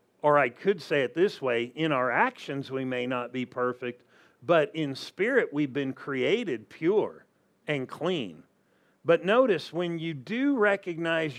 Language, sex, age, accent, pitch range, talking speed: English, male, 50-69, American, 140-175 Hz, 160 wpm